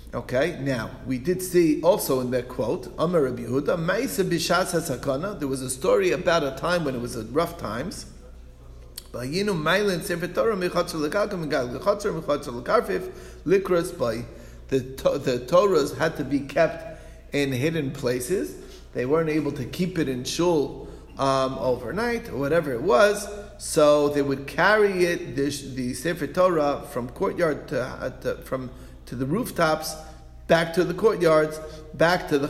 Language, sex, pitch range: English, male, 130-170 Hz